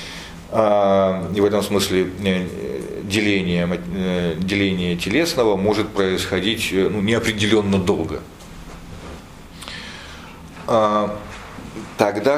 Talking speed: 65 wpm